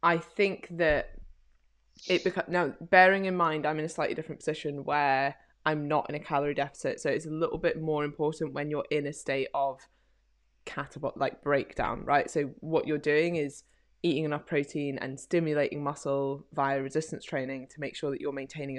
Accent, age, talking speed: British, 20-39, 190 wpm